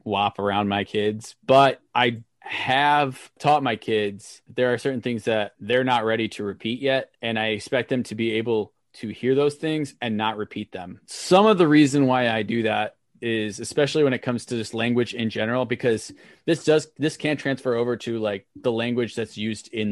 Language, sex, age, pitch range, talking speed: English, male, 20-39, 105-130 Hz, 210 wpm